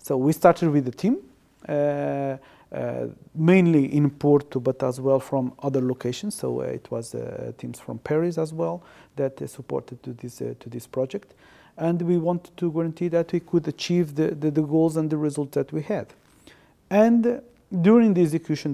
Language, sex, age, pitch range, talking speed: English, male, 40-59, 135-165 Hz, 190 wpm